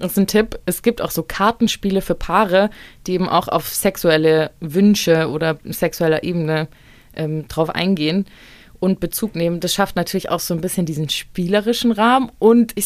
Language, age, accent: German, 20-39, German